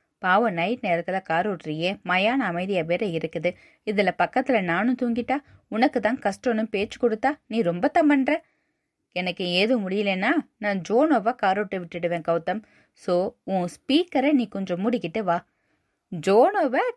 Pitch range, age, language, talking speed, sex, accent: 185-275 Hz, 20-39, Tamil, 130 wpm, female, native